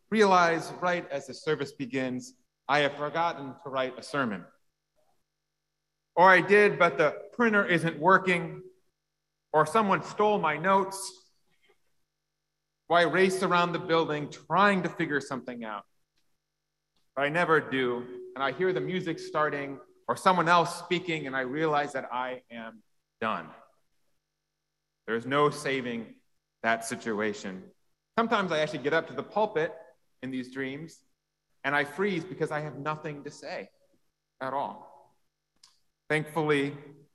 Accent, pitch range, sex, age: American, 140-180 Hz, male, 30-49